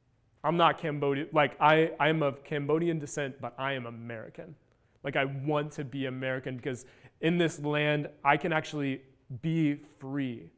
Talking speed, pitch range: 160 wpm, 140-180 Hz